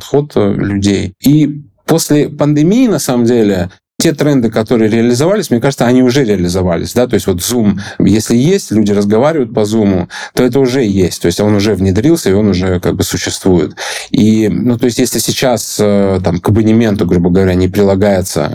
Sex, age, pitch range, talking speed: male, 20-39, 90-120 Hz, 180 wpm